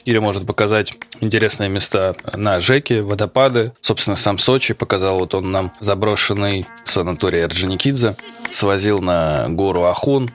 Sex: male